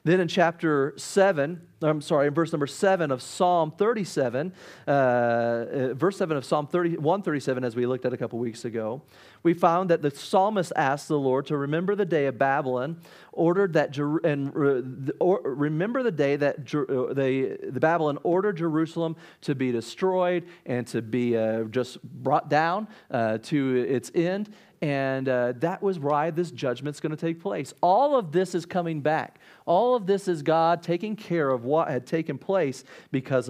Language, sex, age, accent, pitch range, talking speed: English, male, 40-59, American, 135-180 Hz, 175 wpm